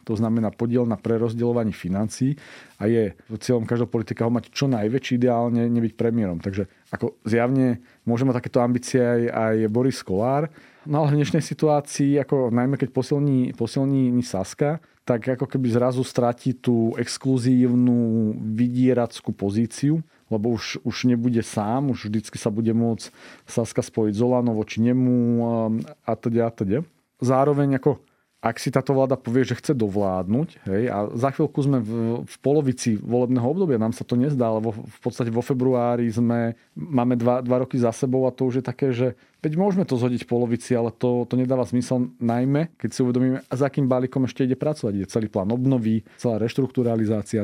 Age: 40-59